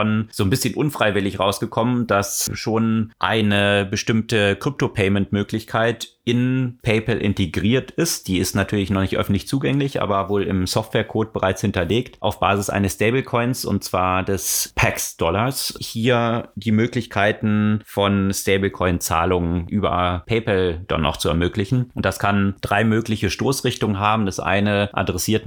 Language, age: German, 30-49